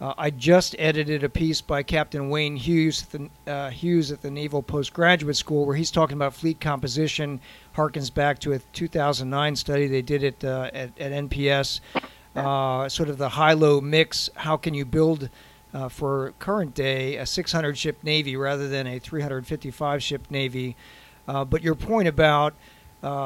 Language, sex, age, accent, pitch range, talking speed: English, male, 50-69, American, 140-155 Hz, 170 wpm